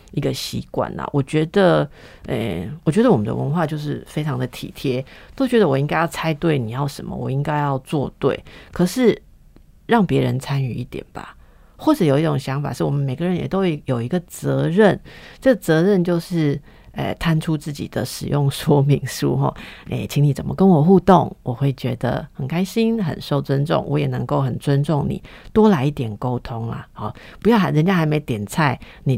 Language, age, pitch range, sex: Chinese, 50-69, 130-165 Hz, female